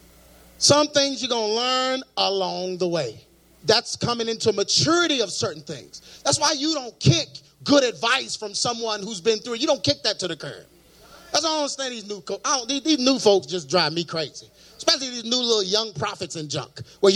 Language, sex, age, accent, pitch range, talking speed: English, male, 30-49, American, 210-325 Hz, 210 wpm